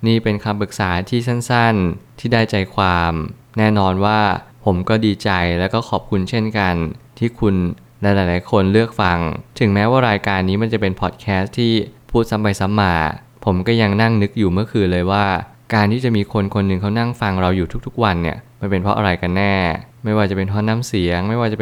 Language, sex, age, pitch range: Thai, male, 20-39, 95-115 Hz